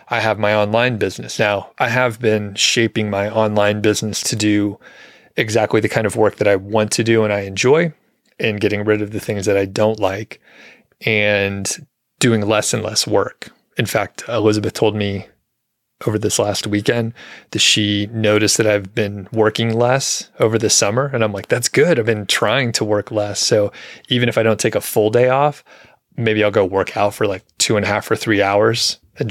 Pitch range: 105-115 Hz